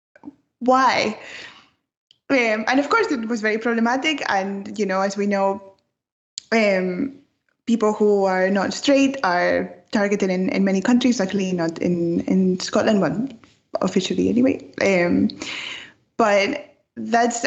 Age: 10-29